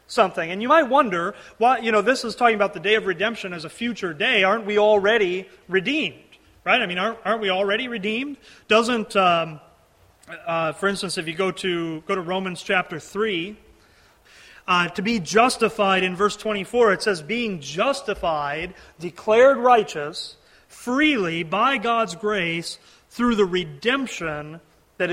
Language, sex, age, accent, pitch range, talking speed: English, male, 30-49, American, 185-230 Hz, 160 wpm